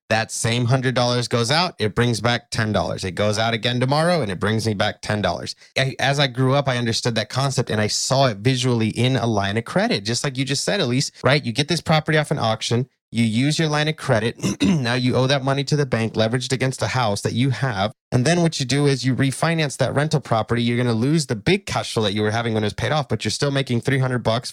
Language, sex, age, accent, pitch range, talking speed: English, male, 30-49, American, 115-150 Hz, 260 wpm